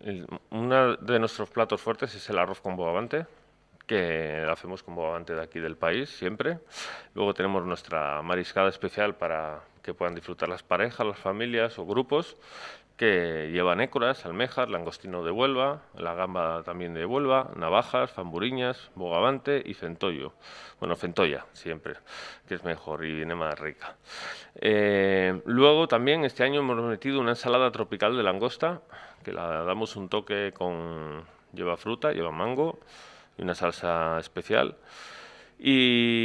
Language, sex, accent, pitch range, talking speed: Spanish, male, Spanish, 90-120 Hz, 145 wpm